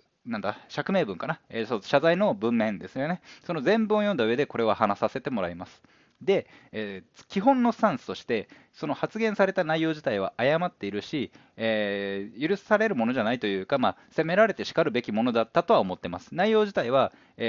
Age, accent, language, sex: 20-39, native, Japanese, male